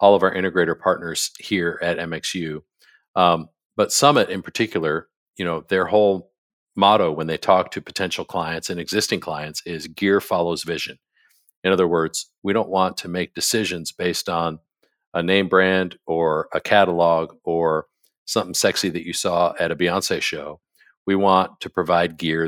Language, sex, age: English, male, 50-69